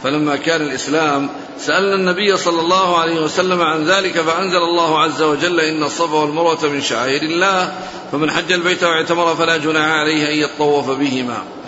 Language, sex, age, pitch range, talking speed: Arabic, male, 50-69, 150-175 Hz, 160 wpm